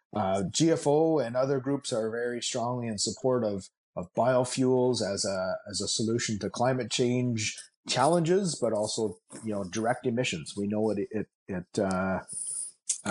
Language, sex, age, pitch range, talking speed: English, male, 30-49, 105-125 Hz, 160 wpm